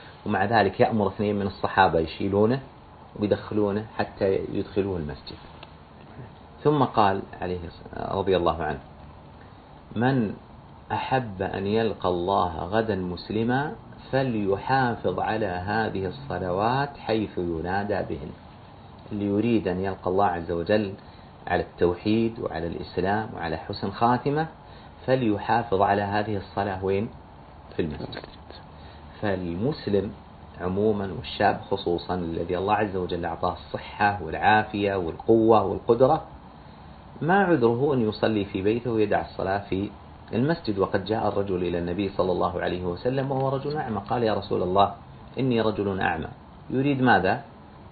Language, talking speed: Arabic, 120 wpm